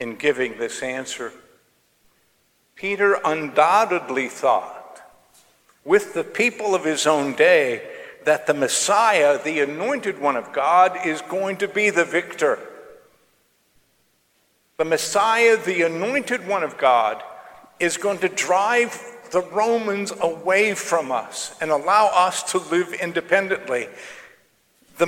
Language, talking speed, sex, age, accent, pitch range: English, 120 wpm, male, 50-69, American, 145-205 Hz